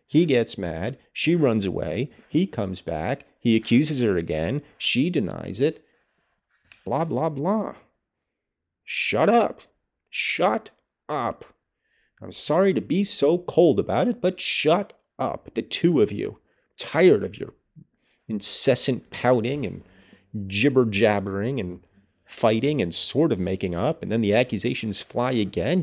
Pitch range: 100-135 Hz